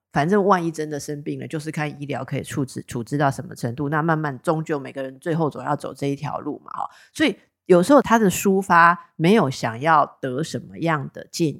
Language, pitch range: Chinese, 140-175 Hz